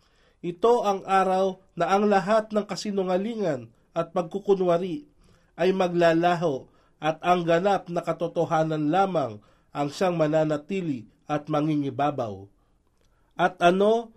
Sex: male